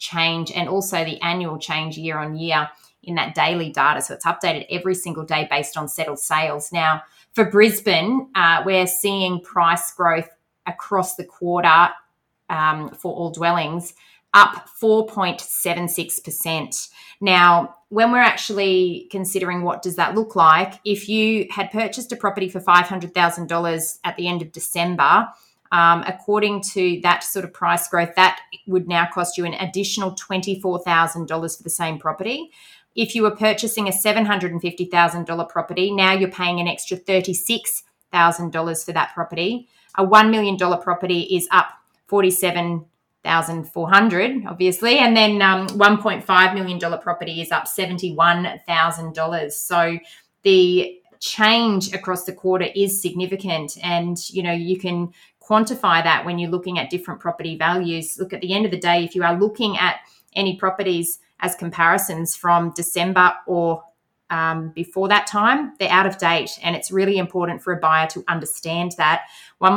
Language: English